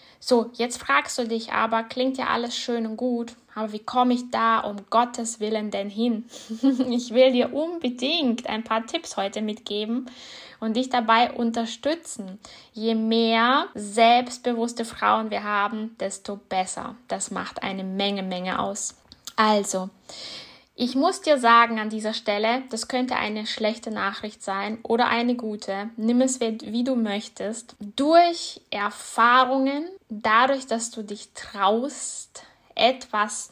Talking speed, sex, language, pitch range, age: 140 wpm, female, German, 210-245 Hz, 10-29